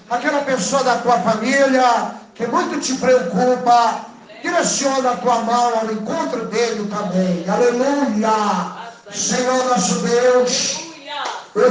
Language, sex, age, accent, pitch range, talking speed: Portuguese, male, 60-79, Brazilian, 255-290 Hz, 115 wpm